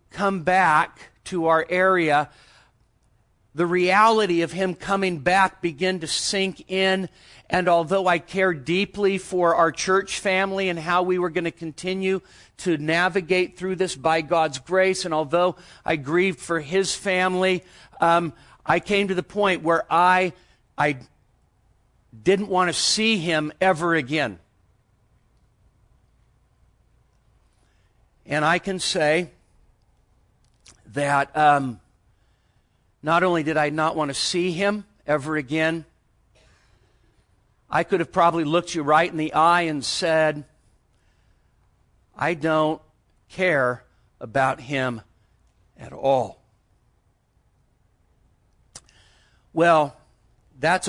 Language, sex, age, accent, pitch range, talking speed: English, male, 50-69, American, 120-180 Hz, 115 wpm